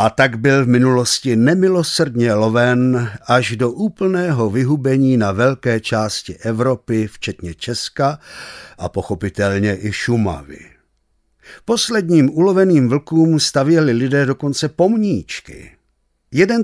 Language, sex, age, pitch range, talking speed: Czech, male, 50-69, 110-165 Hz, 105 wpm